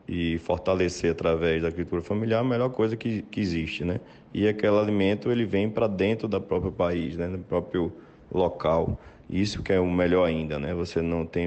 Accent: Brazilian